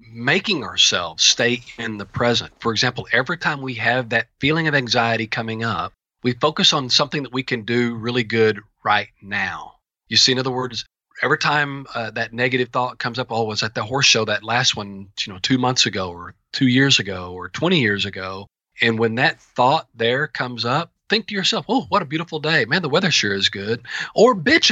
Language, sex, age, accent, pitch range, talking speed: English, male, 40-59, American, 110-145 Hz, 215 wpm